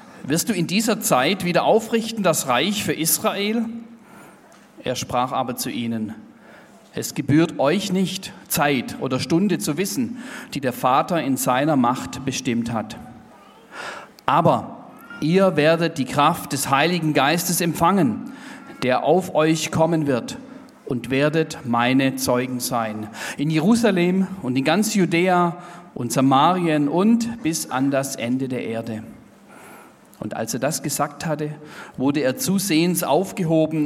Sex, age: male, 40-59